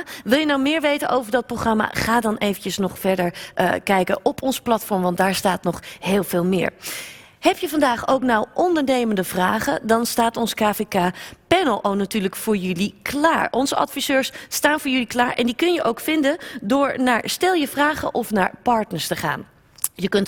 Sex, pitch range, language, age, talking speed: female, 190-270 Hz, Dutch, 30-49, 190 wpm